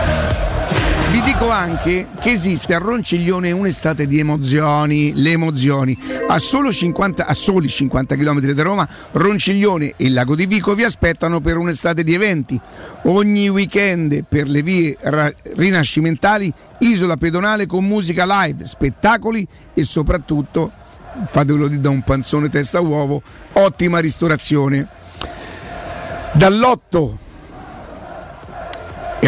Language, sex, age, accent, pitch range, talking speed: Italian, male, 50-69, native, 150-195 Hz, 115 wpm